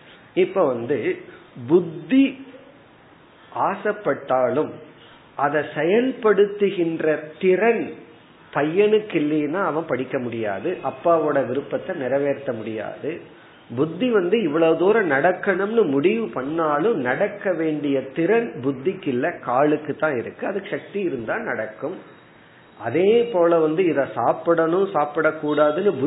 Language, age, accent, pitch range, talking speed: Tamil, 50-69, native, 130-185 Hz, 85 wpm